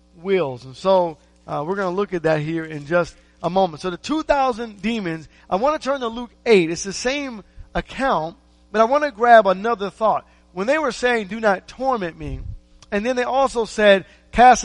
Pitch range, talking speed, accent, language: 160-215 Hz, 210 wpm, American, English